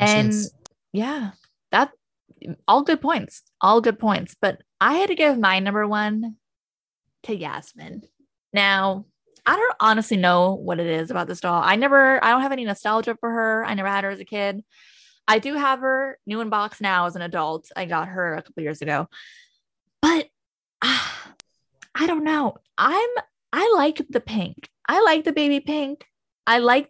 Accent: American